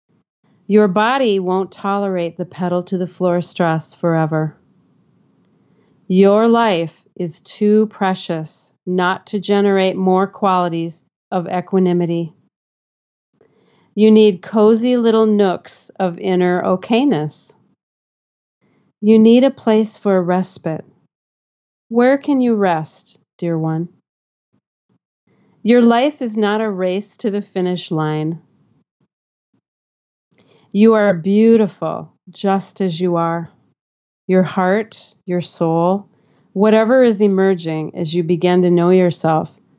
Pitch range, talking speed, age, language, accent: 175-215 Hz, 110 wpm, 40-59, English, American